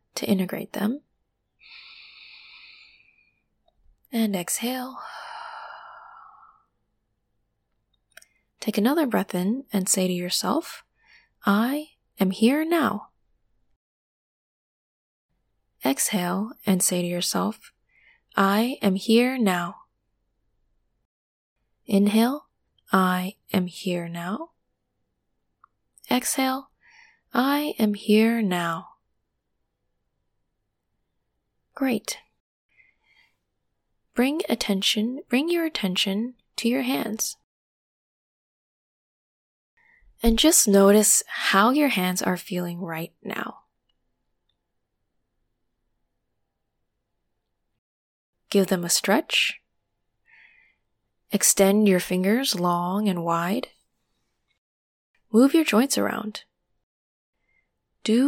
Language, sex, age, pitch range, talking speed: English, female, 20-39, 180-250 Hz, 70 wpm